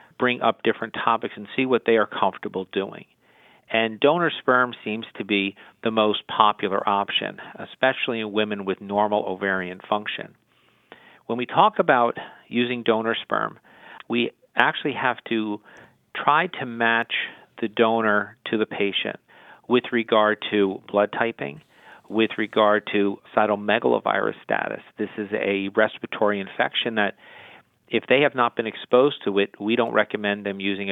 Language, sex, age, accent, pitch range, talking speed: English, male, 50-69, American, 100-120 Hz, 150 wpm